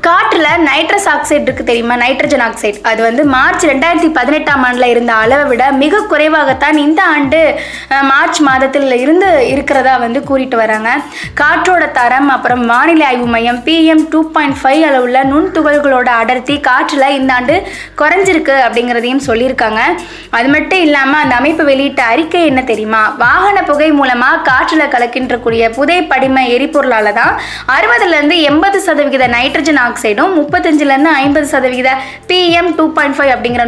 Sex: female